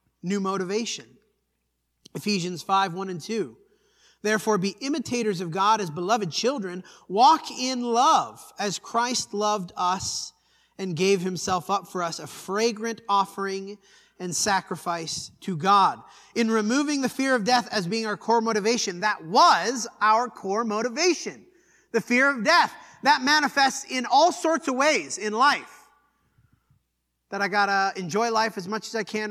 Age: 30-49